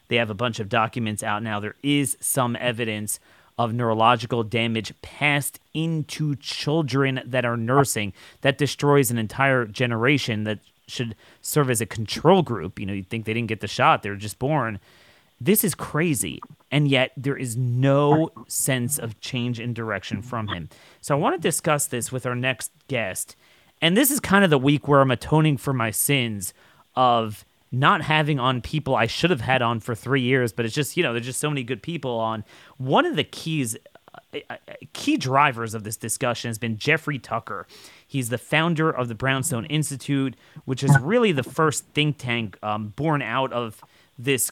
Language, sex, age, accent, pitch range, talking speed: English, male, 30-49, American, 115-140 Hz, 195 wpm